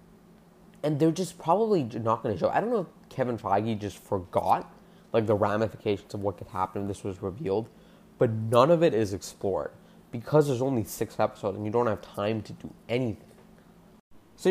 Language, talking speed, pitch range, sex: English, 195 wpm, 95-110 Hz, male